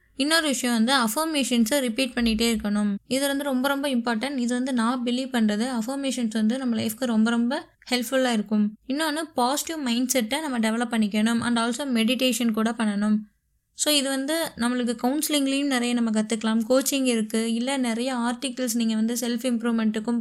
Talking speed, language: 160 wpm, Tamil